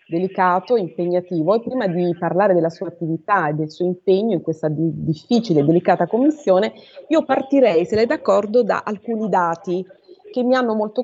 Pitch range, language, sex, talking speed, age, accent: 175-245 Hz, Italian, female, 175 wpm, 30-49, native